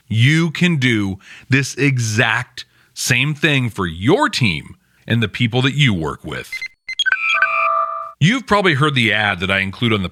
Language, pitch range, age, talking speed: English, 110-180 Hz, 40-59, 160 wpm